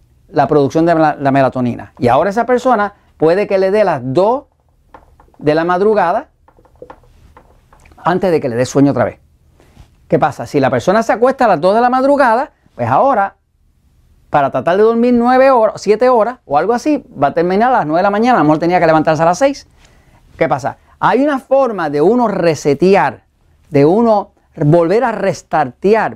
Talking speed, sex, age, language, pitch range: 190 wpm, male, 40-59, Spanish, 145-220 Hz